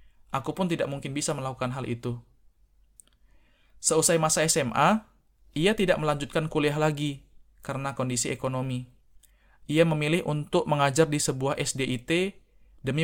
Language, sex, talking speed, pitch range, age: Indonesian, male, 125 wpm, 130-155 Hz, 20-39